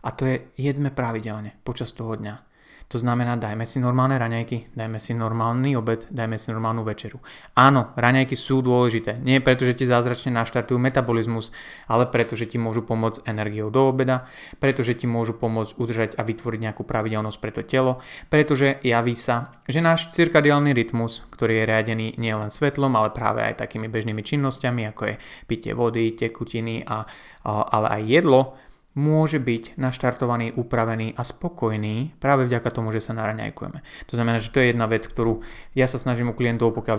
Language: Slovak